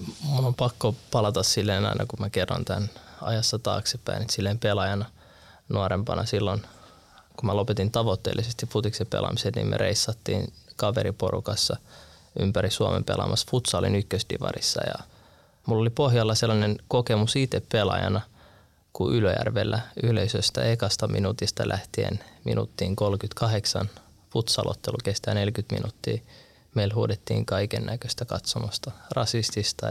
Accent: native